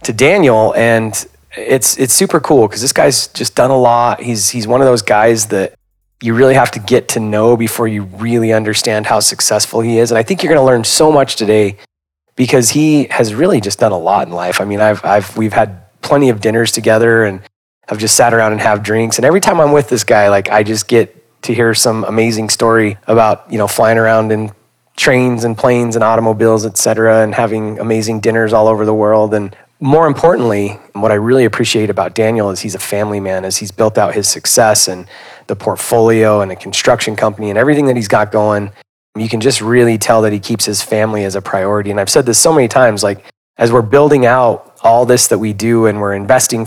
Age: 30-49